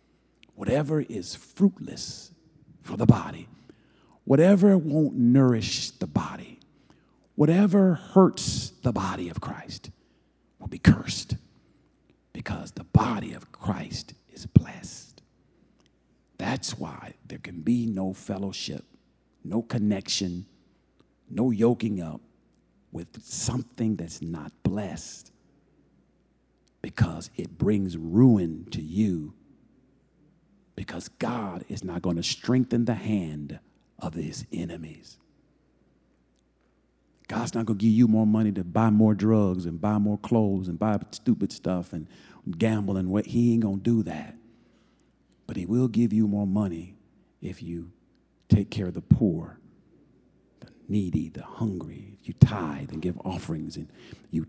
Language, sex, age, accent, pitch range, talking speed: English, male, 50-69, American, 85-120 Hz, 130 wpm